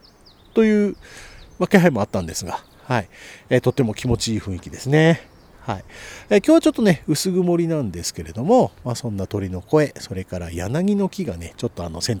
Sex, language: male, Japanese